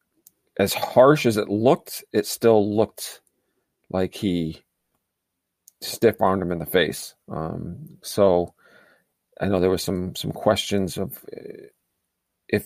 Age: 40-59